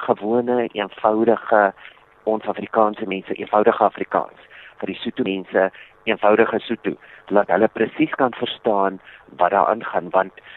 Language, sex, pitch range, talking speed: English, male, 95-115 Hz, 120 wpm